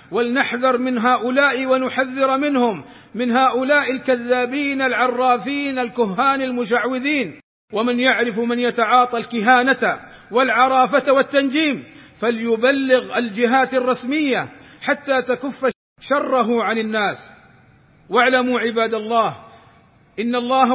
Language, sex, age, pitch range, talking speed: Arabic, male, 50-69, 235-260 Hz, 90 wpm